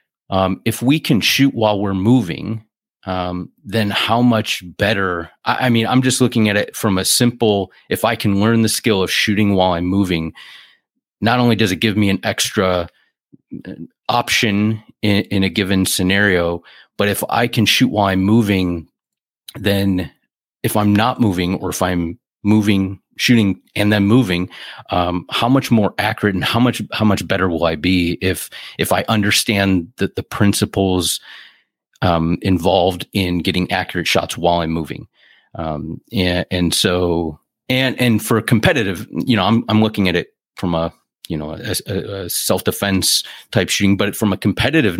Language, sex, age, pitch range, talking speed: English, male, 30-49, 90-110 Hz, 175 wpm